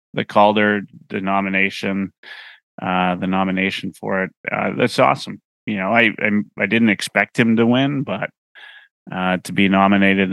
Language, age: English, 30-49